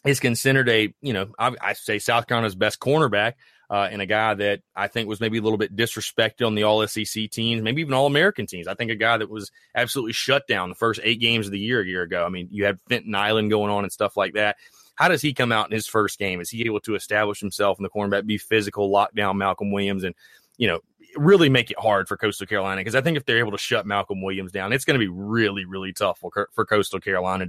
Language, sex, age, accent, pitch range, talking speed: English, male, 30-49, American, 100-125 Hz, 260 wpm